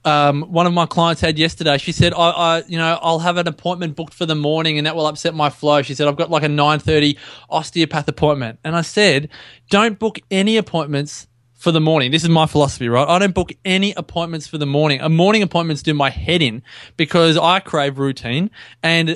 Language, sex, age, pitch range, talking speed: English, male, 20-39, 145-175 Hz, 225 wpm